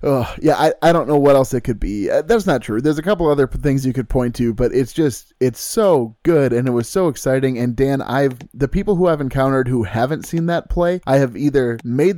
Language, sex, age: English, male, 20-39